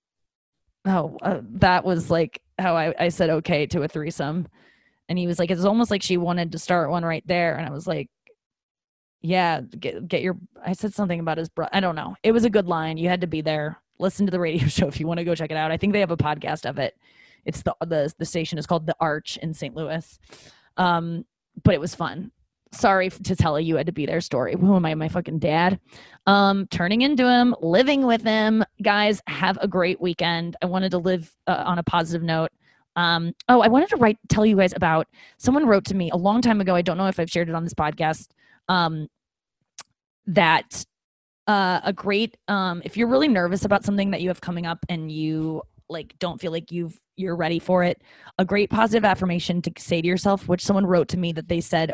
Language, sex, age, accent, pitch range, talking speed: English, female, 20-39, American, 160-190 Hz, 235 wpm